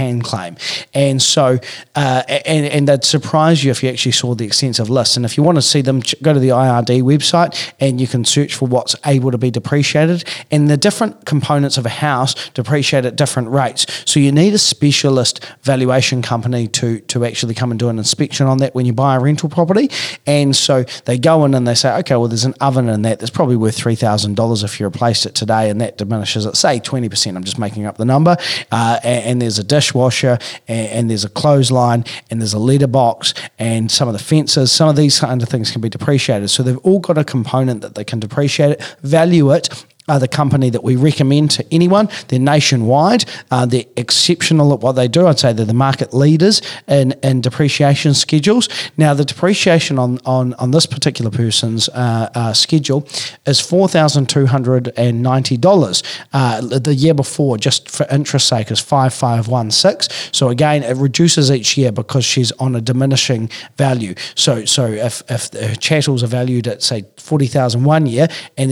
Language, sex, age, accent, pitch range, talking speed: English, male, 30-49, Australian, 120-145 Hz, 205 wpm